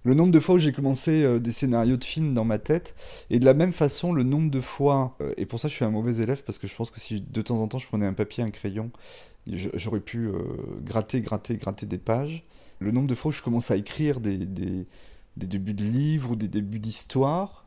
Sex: male